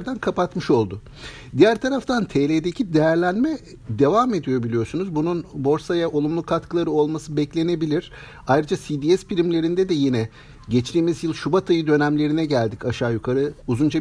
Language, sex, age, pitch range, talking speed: Turkish, male, 50-69, 140-190 Hz, 125 wpm